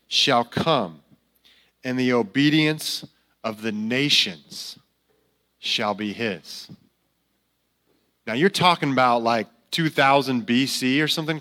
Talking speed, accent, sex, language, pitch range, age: 105 wpm, American, male, English, 120-155 Hz, 30-49